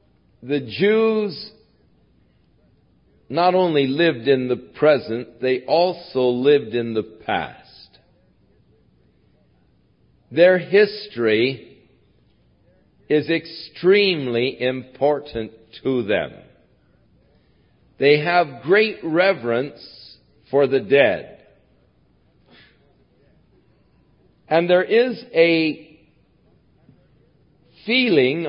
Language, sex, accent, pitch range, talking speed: English, male, American, 130-185 Hz, 70 wpm